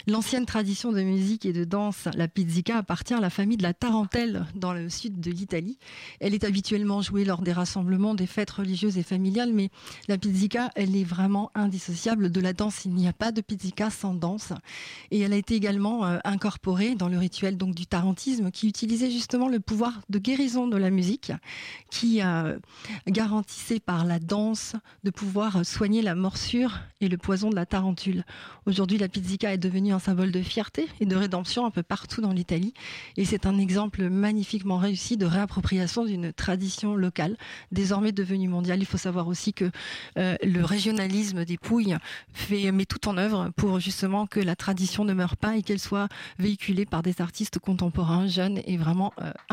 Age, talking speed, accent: 40-59, 190 wpm, French